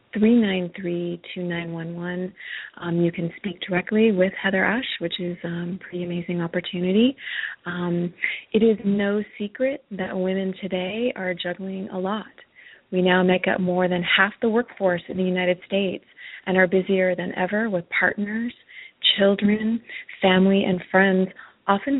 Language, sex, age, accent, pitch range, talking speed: English, female, 30-49, American, 180-210 Hz, 140 wpm